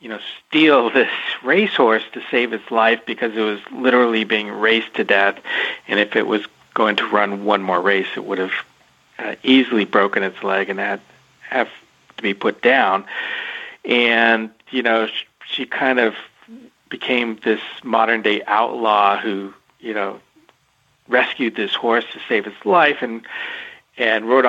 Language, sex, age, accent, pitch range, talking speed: English, male, 50-69, American, 105-120 Hz, 165 wpm